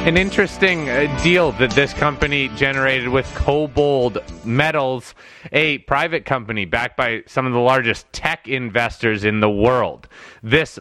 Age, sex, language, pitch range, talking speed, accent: 30-49, male, English, 130-160 Hz, 140 wpm, American